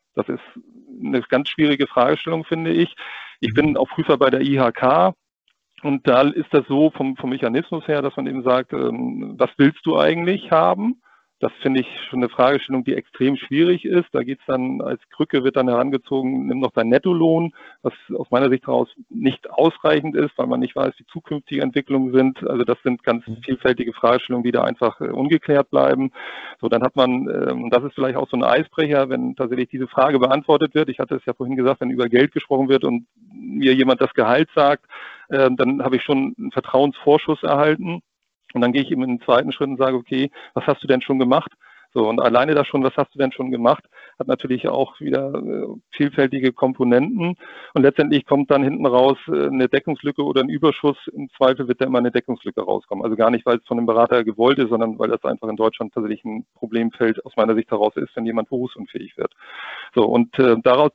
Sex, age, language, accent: male, 40-59, German, German